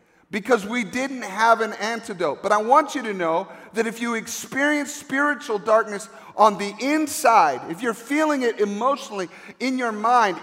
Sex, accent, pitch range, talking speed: male, American, 175-240 Hz, 165 wpm